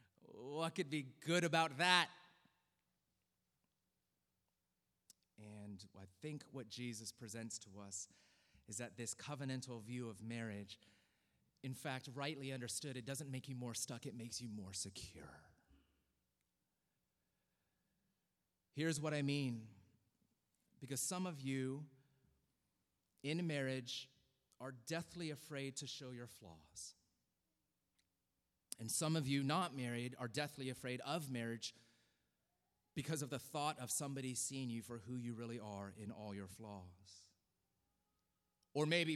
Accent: American